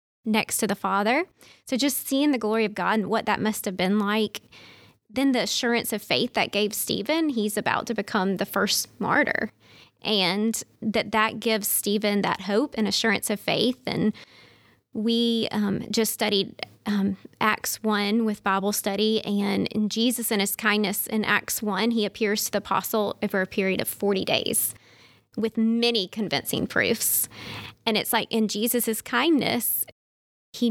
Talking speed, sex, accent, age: 165 wpm, female, American, 20-39